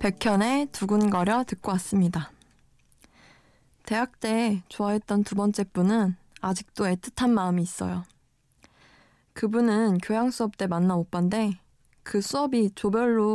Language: Korean